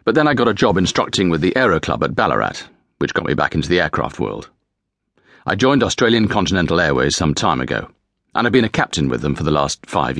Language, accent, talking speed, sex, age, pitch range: English, British, 235 wpm, male, 40-59, 75-95 Hz